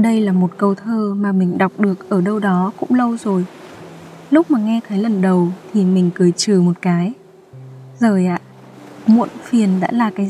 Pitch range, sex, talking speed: 190-240 Hz, female, 200 wpm